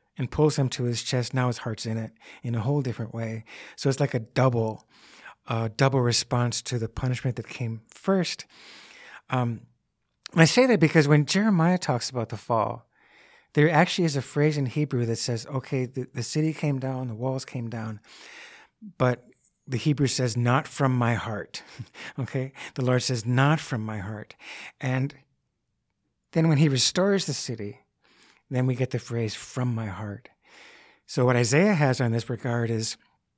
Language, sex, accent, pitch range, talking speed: English, male, American, 120-145 Hz, 180 wpm